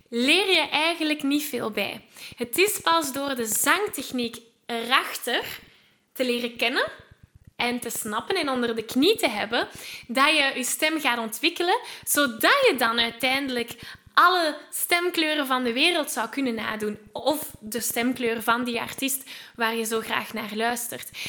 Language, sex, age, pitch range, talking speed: Dutch, female, 10-29, 230-290 Hz, 155 wpm